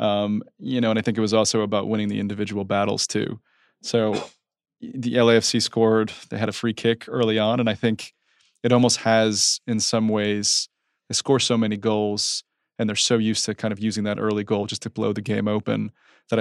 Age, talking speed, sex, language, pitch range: 20-39, 210 wpm, male, English, 105-115 Hz